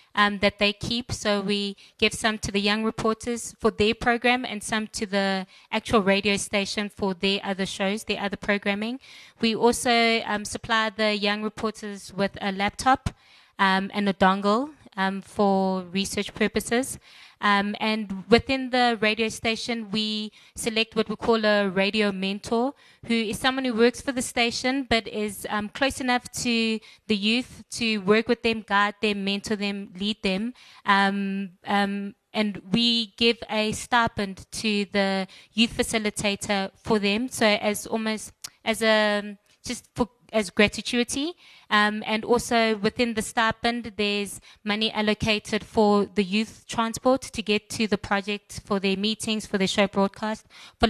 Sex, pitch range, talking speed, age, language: female, 200-230 Hz, 160 wpm, 20-39, English